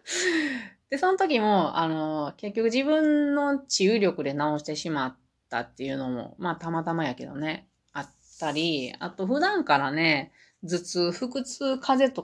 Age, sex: 30-49, female